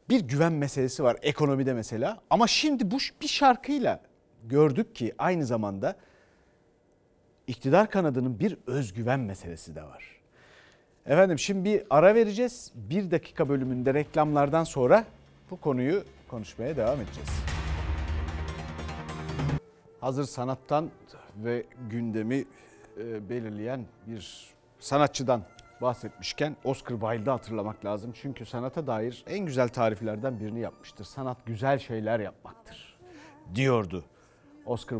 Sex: male